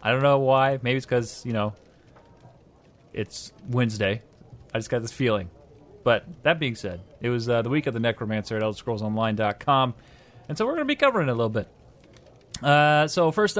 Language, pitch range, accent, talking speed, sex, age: English, 115-140 Hz, American, 195 wpm, male, 30-49